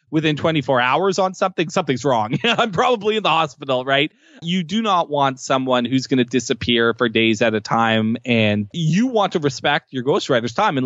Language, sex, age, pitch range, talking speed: English, male, 20-39, 120-160 Hz, 200 wpm